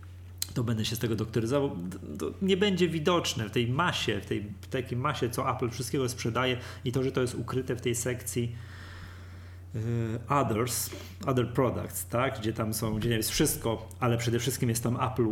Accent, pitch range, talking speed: native, 100-130 Hz, 190 wpm